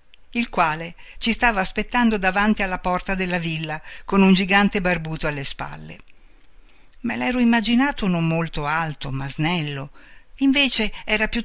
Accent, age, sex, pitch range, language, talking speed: native, 60-79, female, 160-210 Hz, Italian, 140 wpm